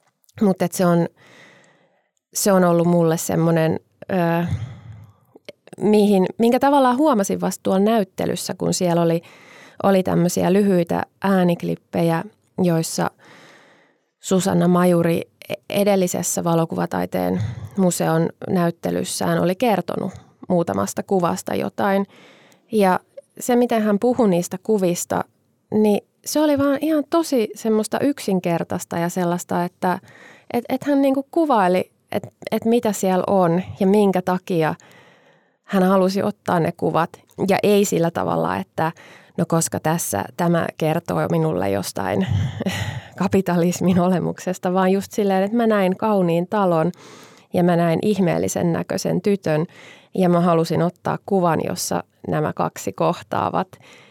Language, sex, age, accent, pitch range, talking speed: Finnish, female, 20-39, native, 170-205 Hz, 115 wpm